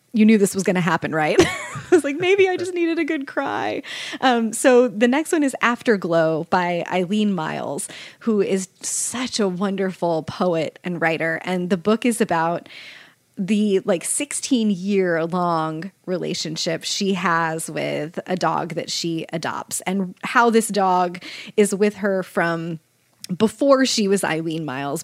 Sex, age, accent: female, 20-39, American